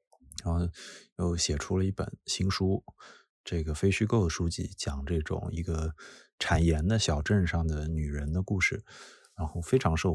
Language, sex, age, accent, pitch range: Chinese, male, 20-39, native, 85-100 Hz